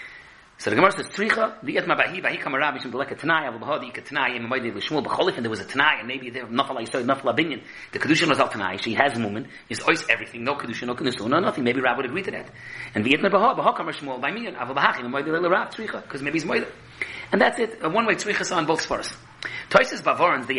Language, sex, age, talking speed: English, male, 40-59, 290 wpm